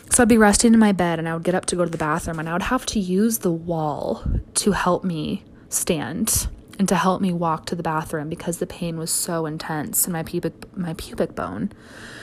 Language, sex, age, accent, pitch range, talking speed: English, female, 20-39, American, 160-190 Hz, 240 wpm